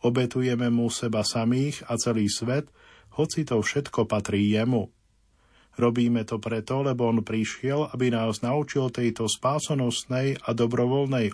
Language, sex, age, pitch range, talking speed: Slovak, male, 40-59, 110-135 Hz, 130 wpm